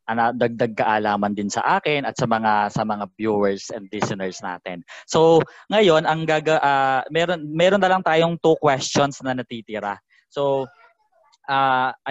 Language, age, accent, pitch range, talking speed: Filipino, 20-39, native, 115-150 Hz, 155 wpm